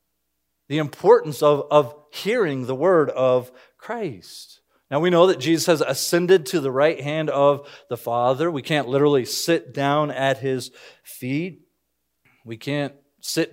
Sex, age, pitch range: male, 40-59, 125-160 Hz